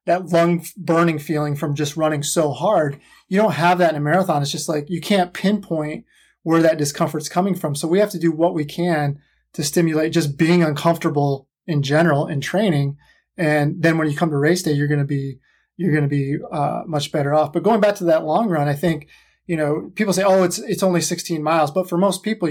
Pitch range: 150-175 Hz